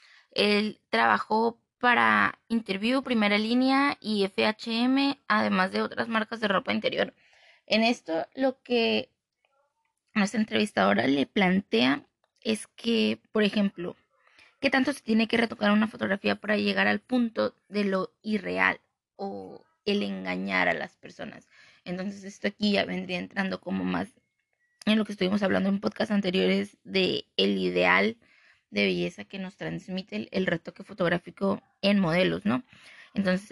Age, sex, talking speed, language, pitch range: 20-39, female, 145 wpm, Spanish, 185-225 Hz